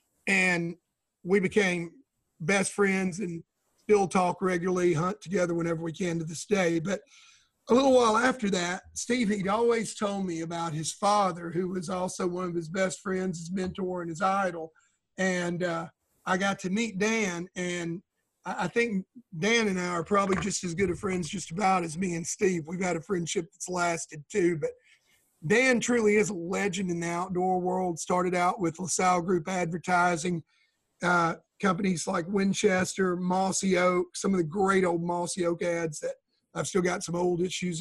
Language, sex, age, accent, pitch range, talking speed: English, male, 40-59, American, 170-195 Hz, 180 wpm